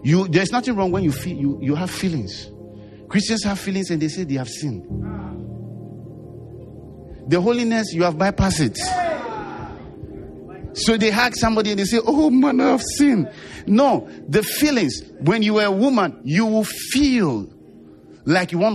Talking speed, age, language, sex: 165 wpm, 50-69, English, male